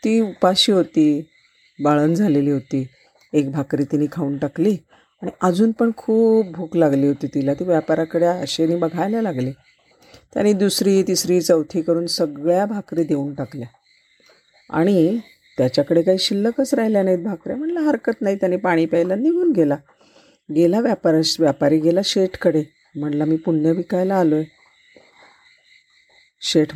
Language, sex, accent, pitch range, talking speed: Marathi, female, native, 150-195 Hz, 130 wpm